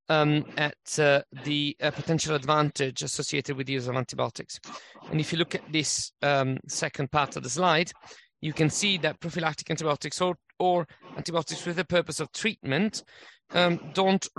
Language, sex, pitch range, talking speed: English, male, 140-165 Hz, 170 wpm